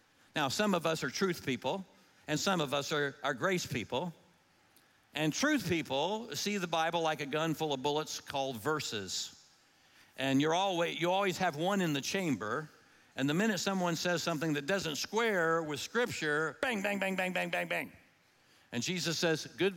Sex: male